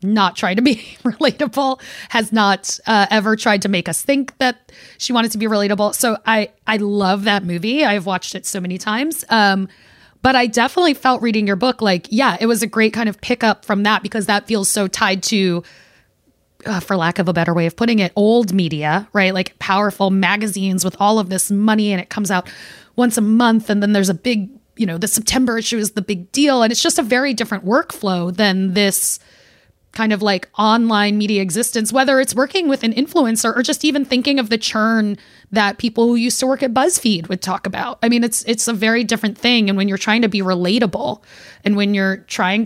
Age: 20-39